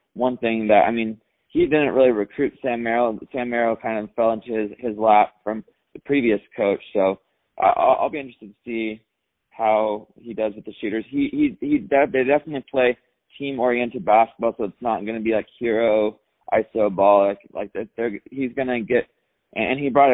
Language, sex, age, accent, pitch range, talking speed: English, male, 20-39, American, 105-125 Hz, 195 wpm